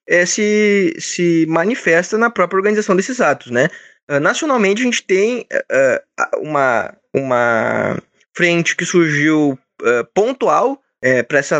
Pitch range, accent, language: 150-210 Hz, Brazilian, Portuguese